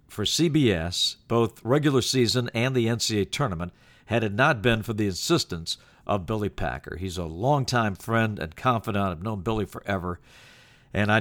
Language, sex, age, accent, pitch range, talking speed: English, male, 50-69, American, 105-135 Hz, 165 wpm